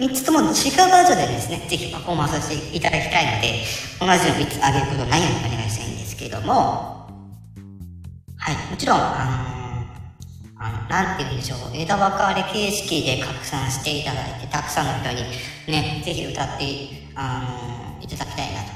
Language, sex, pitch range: Japanese, male, 125-180 Hz